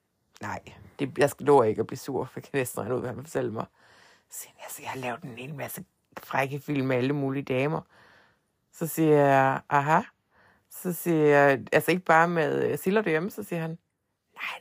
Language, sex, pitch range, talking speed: Danish, female, 140-175 Hz, 205 wpm